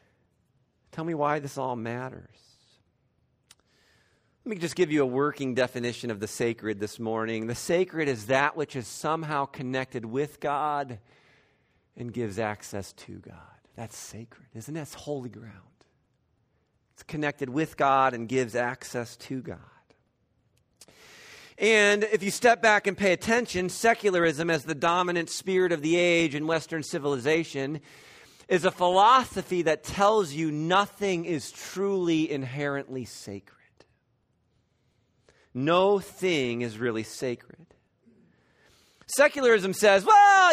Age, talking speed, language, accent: 50-69, 130 wpm, English, American